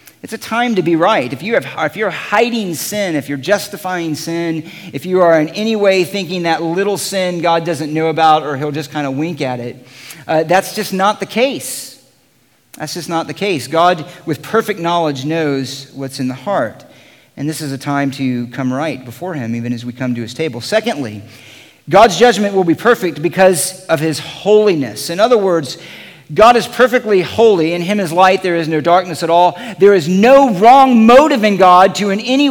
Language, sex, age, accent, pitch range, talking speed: English, male, 40-59, American, 160-210 Hz, 205 wpm